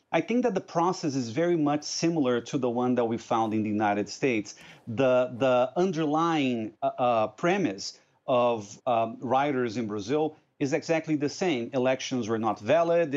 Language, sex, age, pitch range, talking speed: English, male, 40-59, 120-155 Hz, 170 wpm